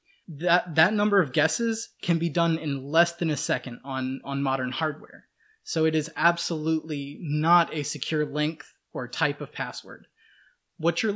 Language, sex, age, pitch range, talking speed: English, male, 20-39, 150-180 Hz, 165 wpm